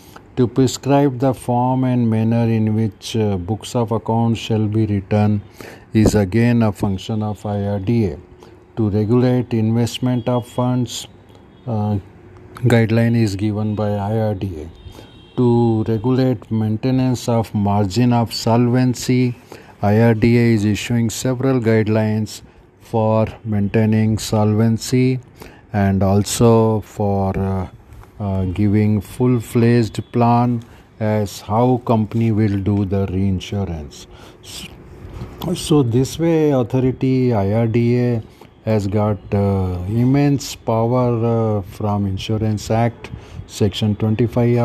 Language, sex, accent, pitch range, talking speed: Hindi, male, native, 105-120 Hz, 110 wpm